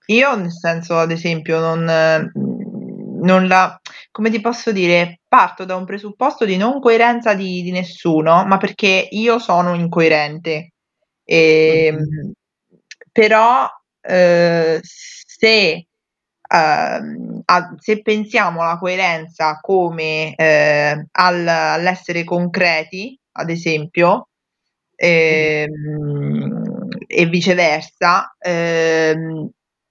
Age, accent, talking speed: 20-39, native, 95 wpm